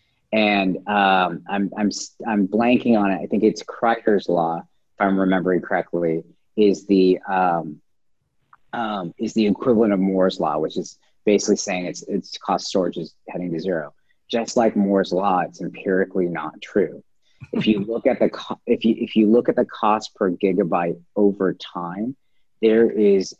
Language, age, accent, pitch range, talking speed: English, 40-59, American, 95-120 Hz, 170 wpm